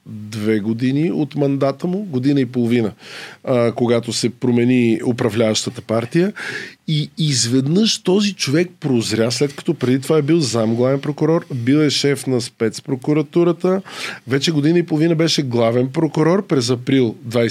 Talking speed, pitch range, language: 140 wpm, 120-160 Hz, Bulgarian